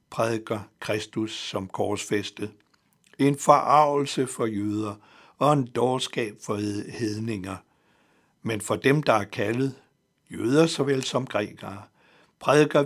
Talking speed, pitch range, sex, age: 110 wpm, 110-140 Hz, male, 60-79